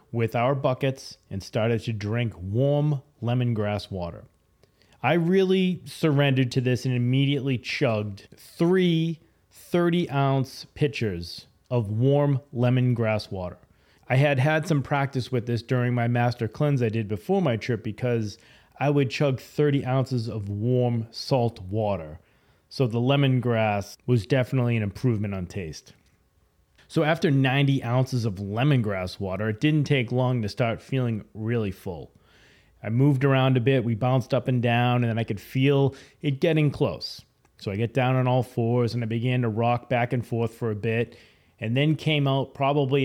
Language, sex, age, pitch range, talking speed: English, male, 30-49, 110-135 Hz, 165 wpm